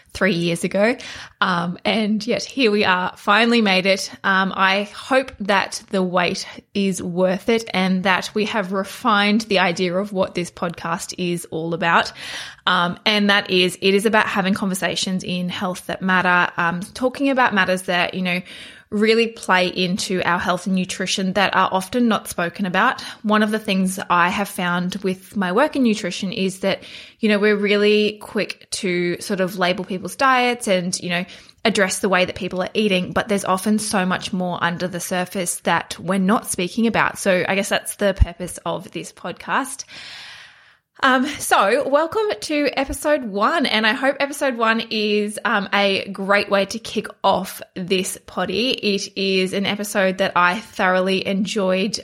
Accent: Australian